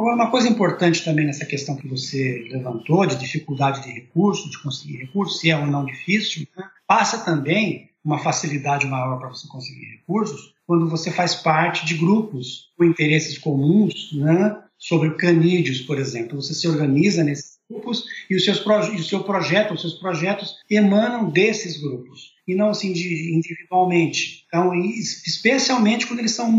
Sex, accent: male, Brazilian